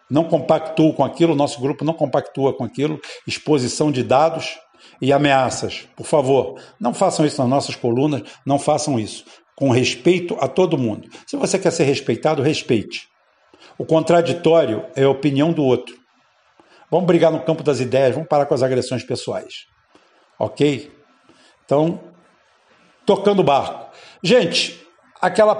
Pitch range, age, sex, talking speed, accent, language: 130-165 Hz, 50-69, male, 150 wpm, Brazilian, Portuguese